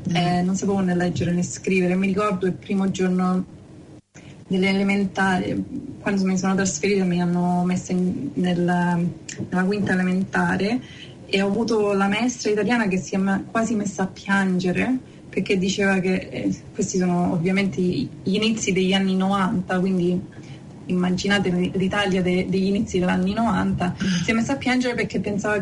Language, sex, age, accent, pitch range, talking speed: Italian, female, 20-39, native, 180-205 Hz, 155 wpm